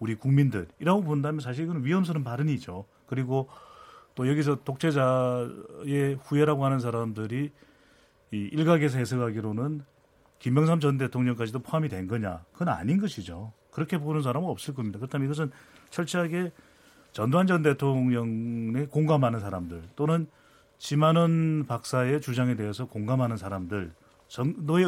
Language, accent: Korean, native